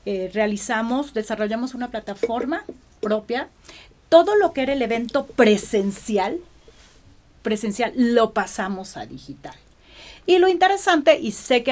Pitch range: 215-295 Hz